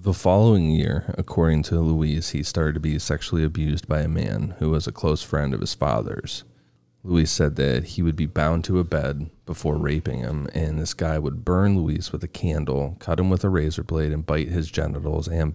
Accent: American